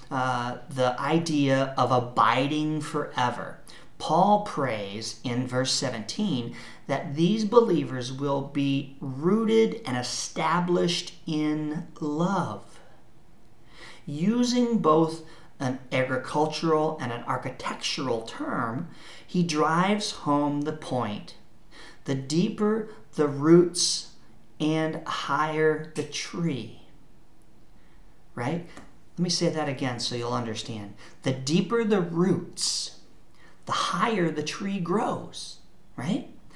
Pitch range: 135-175 Hz